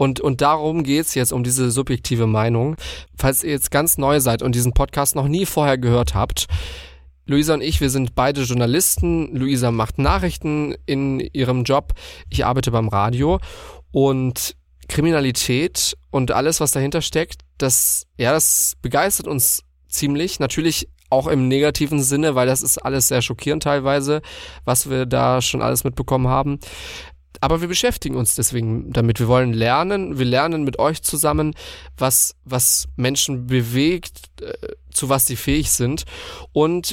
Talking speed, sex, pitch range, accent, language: 160 wpm, male, 120-145 Hz, German, German